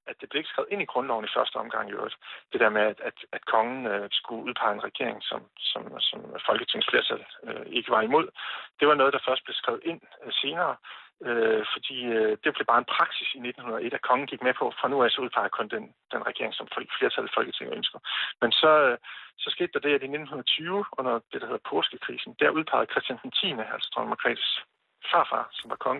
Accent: native